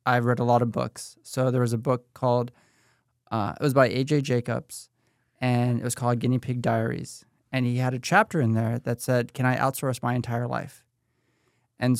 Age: 20-39